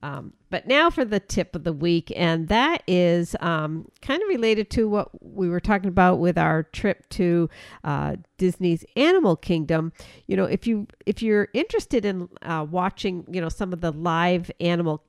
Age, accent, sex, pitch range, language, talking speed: 50-69, American, female, 165-195 Hz, English, 195 wpm